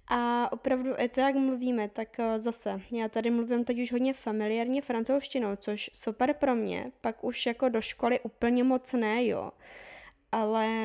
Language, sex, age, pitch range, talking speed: Czech, female, 20-39, 215-250 Hz, 165 wpm